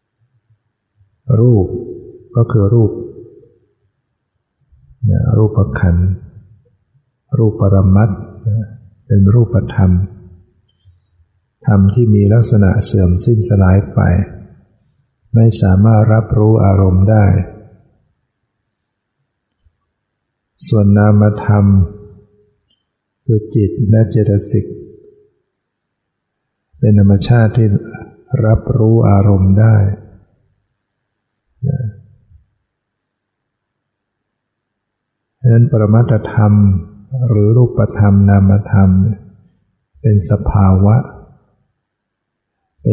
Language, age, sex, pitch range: Thai, 60-79, male, 100-115 Hz